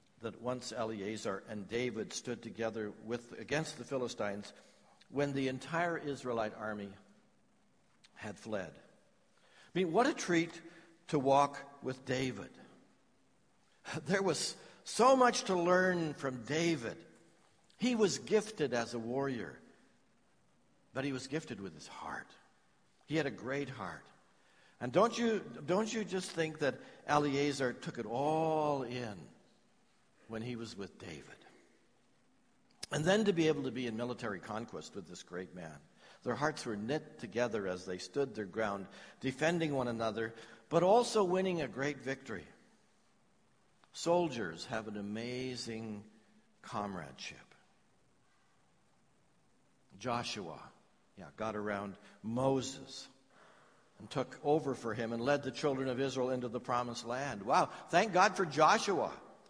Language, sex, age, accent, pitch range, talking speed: English, male, 60-79, American, 115-160 Hz, 135 wpm